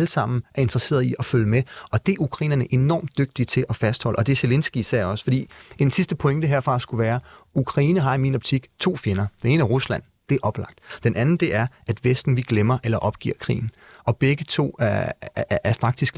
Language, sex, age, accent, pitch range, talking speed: Danish, male, 30-49, native, 115-140 Hz, 235 wpm